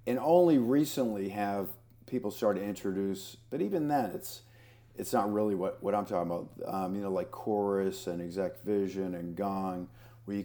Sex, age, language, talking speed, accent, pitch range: male, 50-69, English, 185 wpm, American, 95-115 Hz